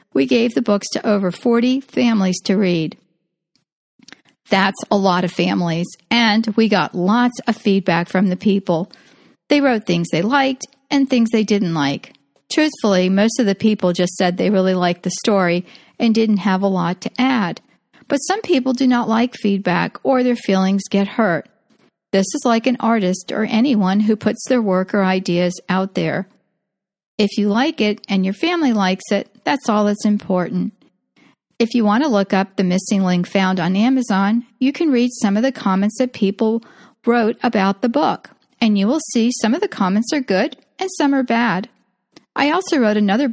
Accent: American